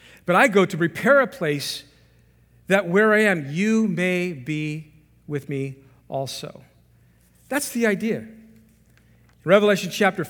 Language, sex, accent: English, male, American